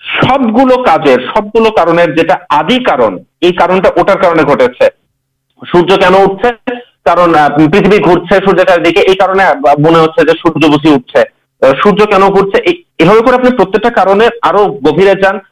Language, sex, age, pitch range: Urdu, male, 50-69, 145-225 Hz